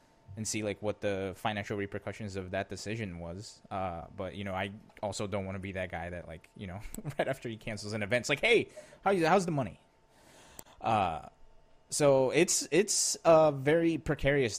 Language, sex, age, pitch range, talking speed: English, male, 20-39, 100-125 Hz, 195 wpm